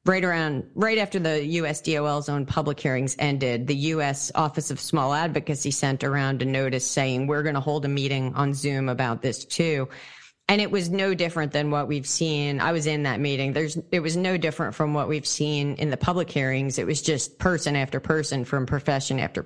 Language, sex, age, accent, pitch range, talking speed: English, female, 30-49, American, 140-170 Hz, 210 wpm